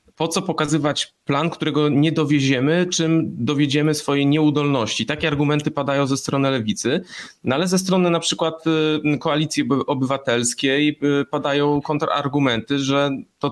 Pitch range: 120-155 Hz